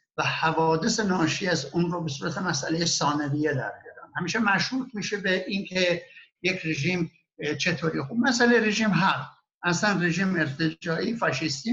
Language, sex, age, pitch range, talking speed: Persian, male, 60-79, 160-210 Hz, 140 wpm